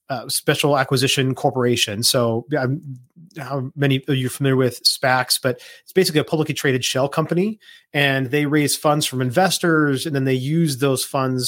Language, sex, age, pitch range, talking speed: English, male, 30-49, 130-150 Hz, 175 wpm